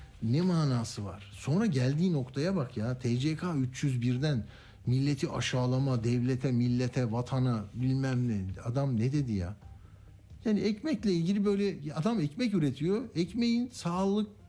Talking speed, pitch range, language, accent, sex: 125 wpm, 115-175 Hz, Turkish, native, male